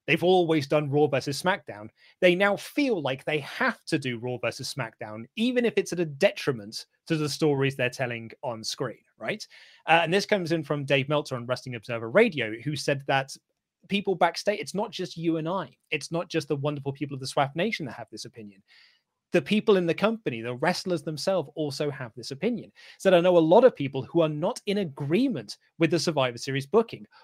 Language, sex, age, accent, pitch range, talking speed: English, male, 30-49, British, 140-190 Hz, 215 wpm